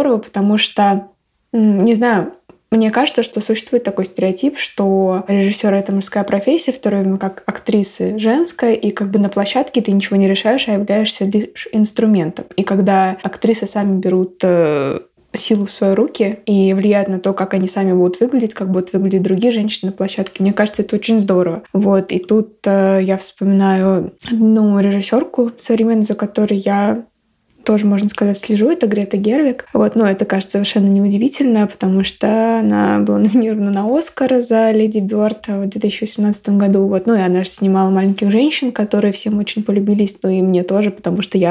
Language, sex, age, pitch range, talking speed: Russian, female, 20-39, 195-220 Hz, 170 wpm